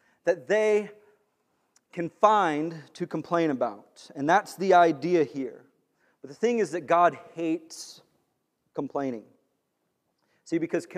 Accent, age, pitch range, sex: American, 30-49, 155-210 Hz, male